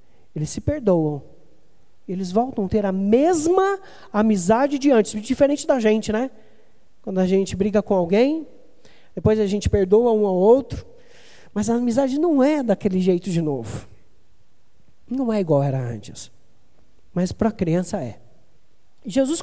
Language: Portuguese